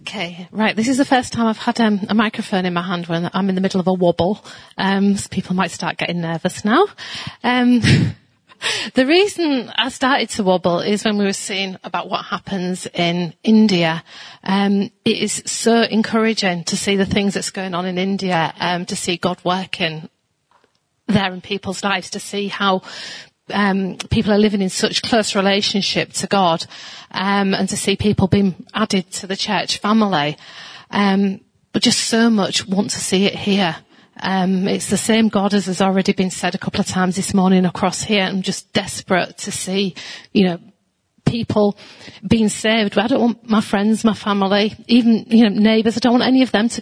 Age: 40-59